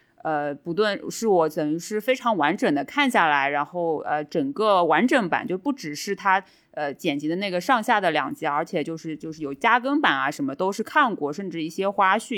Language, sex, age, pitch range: Chinese, female, 20-39, 165-255 Hz